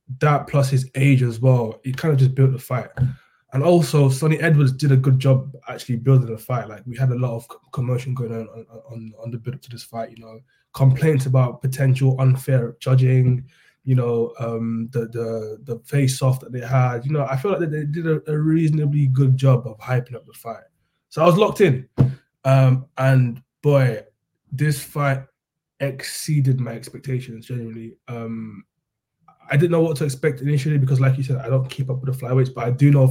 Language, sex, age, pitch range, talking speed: English, male, 20-39, 125-140 Hz, 210 wpm